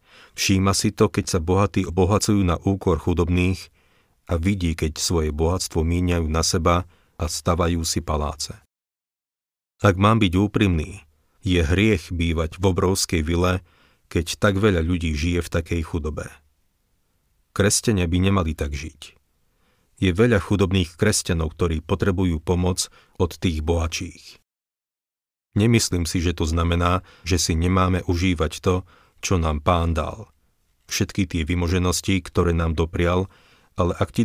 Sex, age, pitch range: male, 40-59, 80-95 Hz